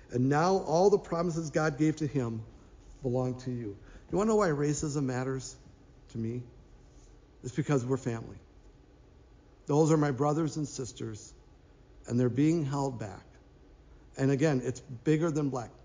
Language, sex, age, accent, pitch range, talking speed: English, male, 50-69, American, 120-150 Hz, 160 wpm